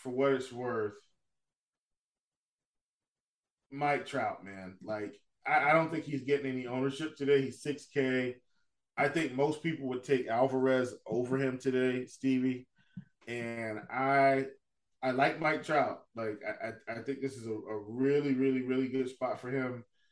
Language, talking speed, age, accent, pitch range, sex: English, 160 wpm, 20-39, American, 125-150 Hz, male